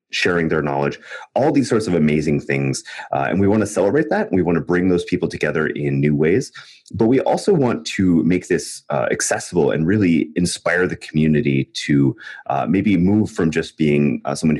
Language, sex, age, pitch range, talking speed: English, male, 30-49, 75-95 Hz, 200 wpm